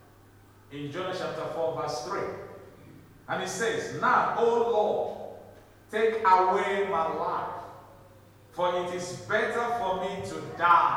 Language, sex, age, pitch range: English, male, 50-69, 100-135 Hz